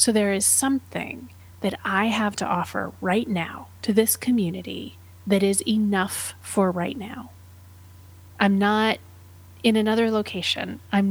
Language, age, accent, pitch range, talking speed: English, 30-49, American, 160-200 Hz, 140 wpm